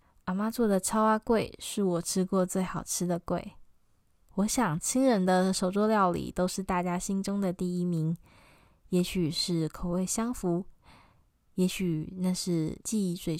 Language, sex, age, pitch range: Chinese, female, 10-29, 180-210 Hz